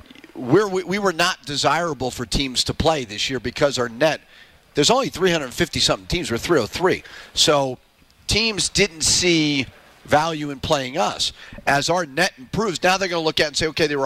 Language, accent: English, American